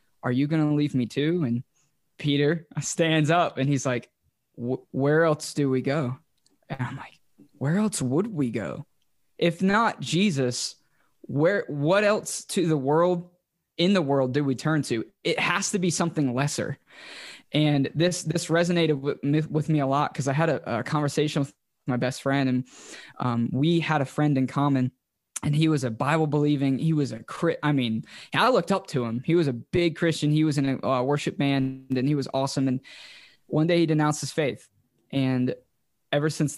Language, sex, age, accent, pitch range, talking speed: English, male, 20-39, American, 130-155 Hz, 195 wpm